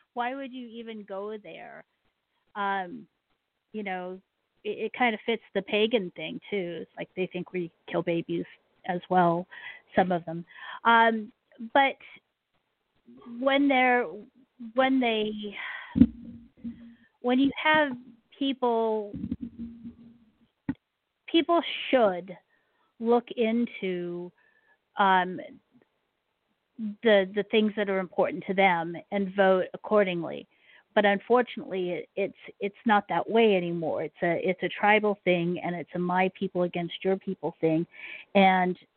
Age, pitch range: 50-69, 185-235 Hz